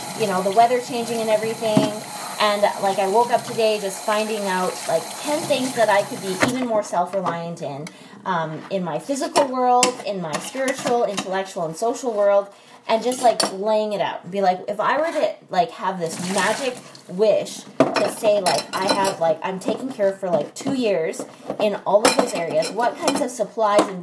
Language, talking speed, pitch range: English, 200 wpm, 195-255 Hz